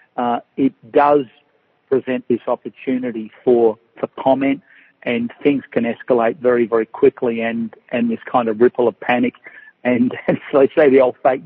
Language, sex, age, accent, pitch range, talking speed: English, male, 50-69, Australian, 120-130 Hz, 170 wpm